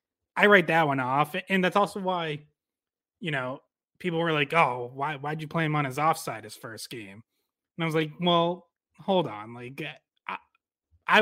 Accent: American